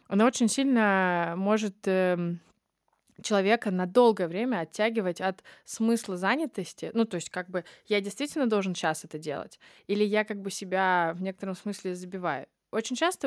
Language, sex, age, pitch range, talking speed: Russian, female, 20-39, 190-235 Hz, 160 wpm